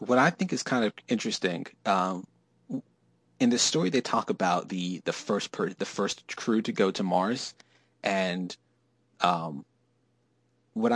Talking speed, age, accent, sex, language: 155 wpm, 30-49, American, male, English